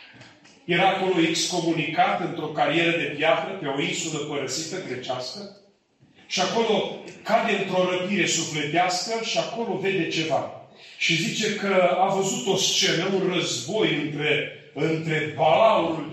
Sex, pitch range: male, 165-215 Hz